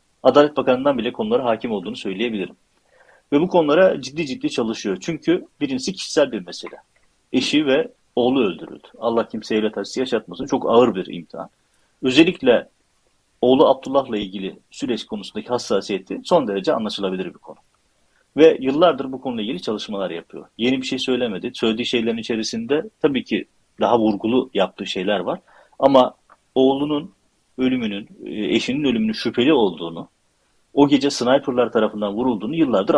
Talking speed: 140 wpm